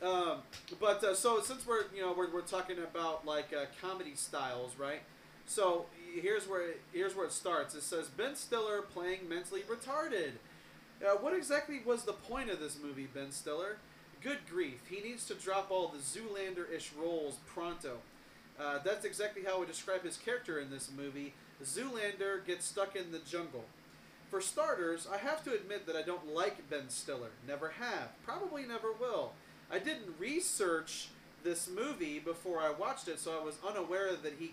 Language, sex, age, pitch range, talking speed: English, male, 30-49, 155-205 Hz, 180 wpm